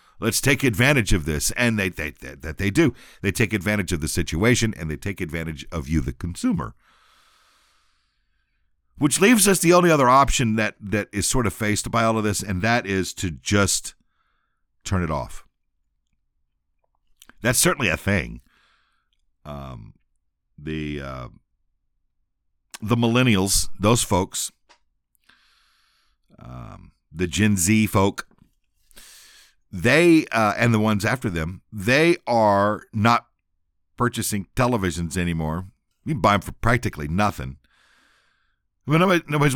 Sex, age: male, 50-69